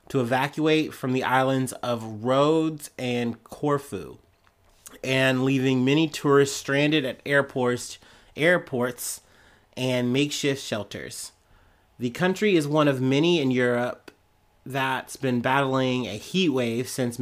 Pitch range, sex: 120-145 Hz, male